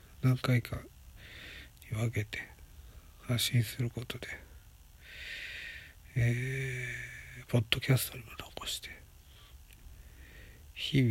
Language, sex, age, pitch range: Japanese, male, 60-79, 70-115 Hz